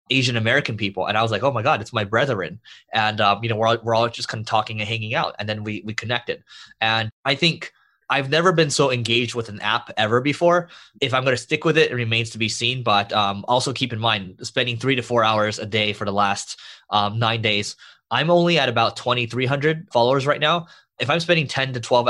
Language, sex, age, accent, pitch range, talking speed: English, male, 20-39, American, 110-130 Hz, 245 wpm